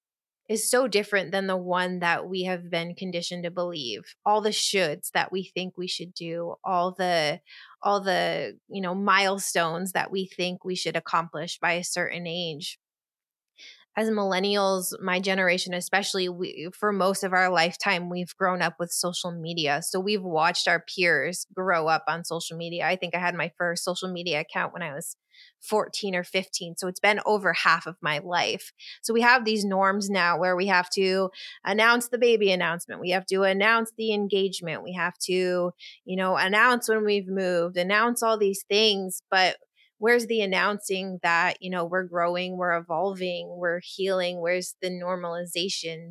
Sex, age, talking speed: female, 20-39, 180 wpm